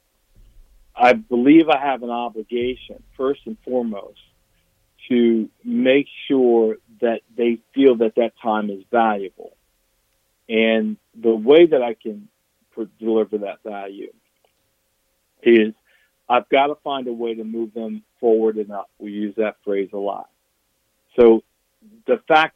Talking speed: 135 wpm